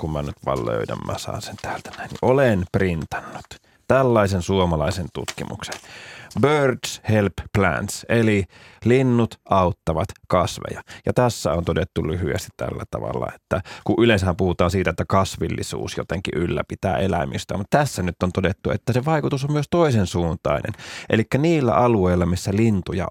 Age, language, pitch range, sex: 30-49, Finnish, 95-115 Hz, male